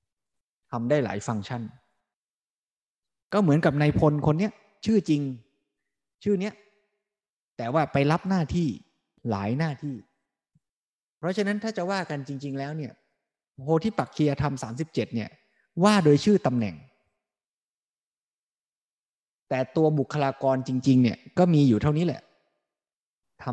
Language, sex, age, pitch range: Thai, male, 20-39, 125-165 Hz